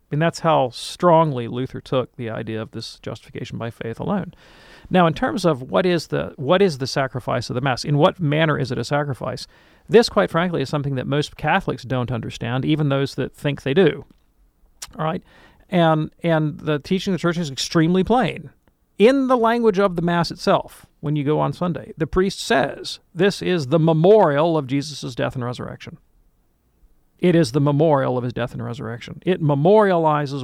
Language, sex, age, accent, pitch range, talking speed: English, male, 40-59, American, 130-180 Hz, 195 wpm